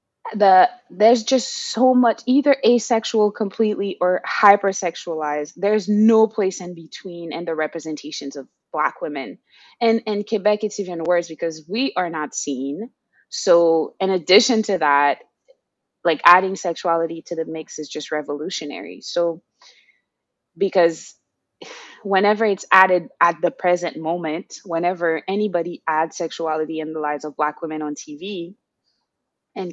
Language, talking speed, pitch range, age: English, 135 wpm, 165-205 Hz, 20-39